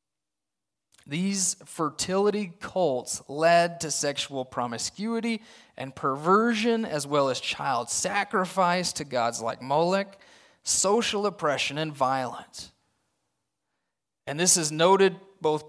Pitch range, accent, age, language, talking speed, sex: 140-180 Hz, American, 30-49, English, 105 wpm, male